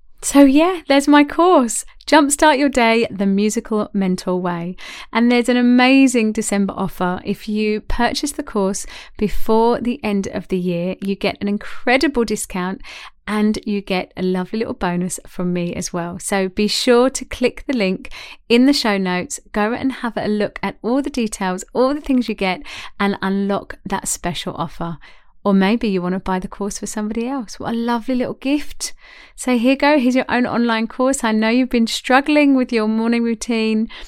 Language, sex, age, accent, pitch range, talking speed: English, female, 30-49, British, 190-255 Hz, 190 wpm